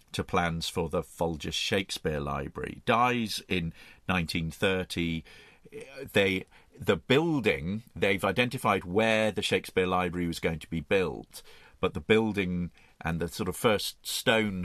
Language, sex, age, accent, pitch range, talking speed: English, male, 50-69, British, 85-110 Hz, 130 wpm